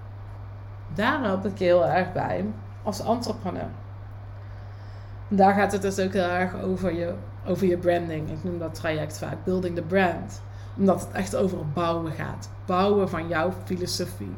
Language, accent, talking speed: Dutch, Dutch, 165 wpm